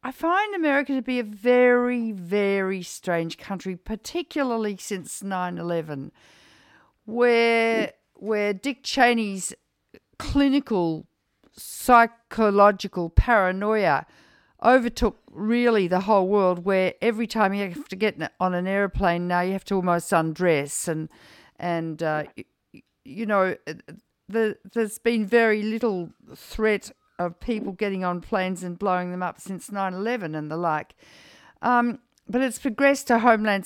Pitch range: 185-240 Hz